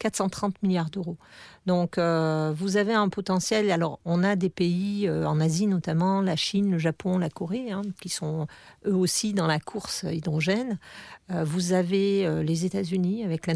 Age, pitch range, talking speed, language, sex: 40-59, 170-210 Hz, 180 wpm, French, female